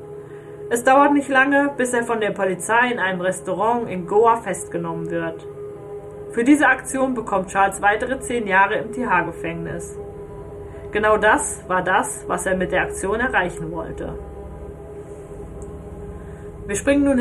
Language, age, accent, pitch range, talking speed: German, 30-49, German, 140-235 Hz, 140 wpm